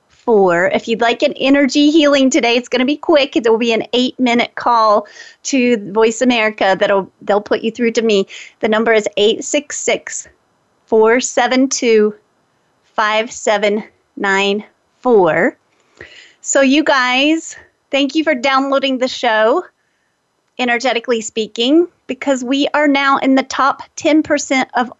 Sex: female